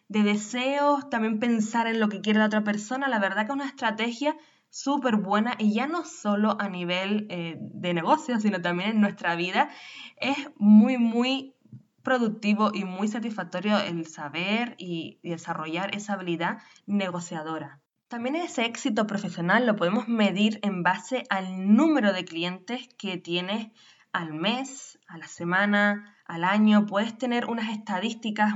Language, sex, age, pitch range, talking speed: Spanish, female, 20-39, 195-245 Hz, 155 wpm